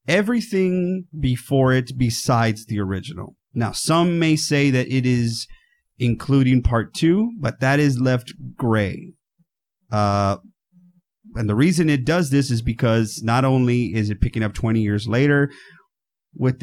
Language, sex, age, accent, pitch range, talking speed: English, male, 30-49, American, 115-145 Hz, 145 wpm